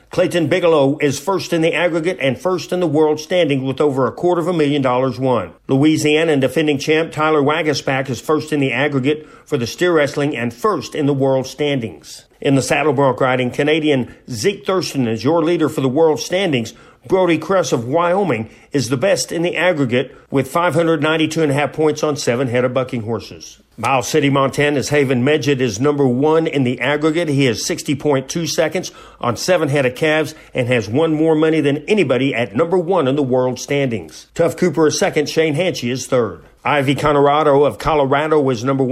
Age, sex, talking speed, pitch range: 50-69, male, 195 wpm, 135-165 Hz